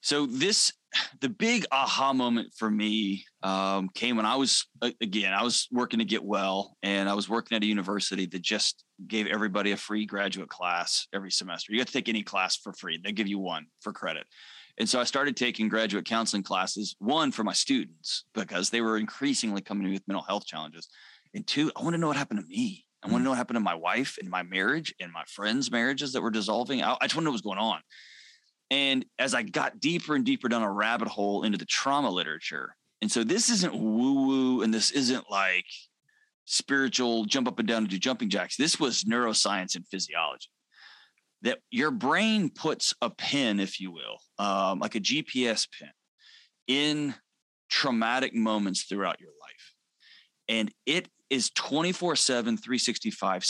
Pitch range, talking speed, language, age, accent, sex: 100-135 Hz, 195 wpm, English, 20-39, American, male